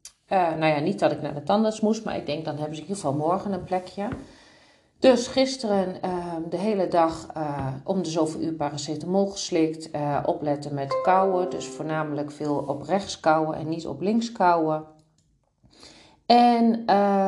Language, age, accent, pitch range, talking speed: Dutch, 40-59, Dutch, 150-205 Hz, 175 wpm